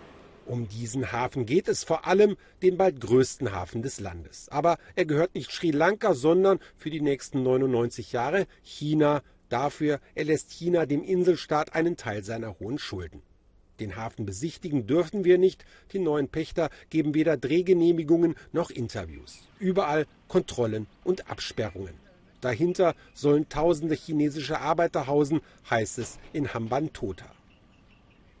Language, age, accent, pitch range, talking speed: German, 40-59, German, 120-175 Hz, 135 wpm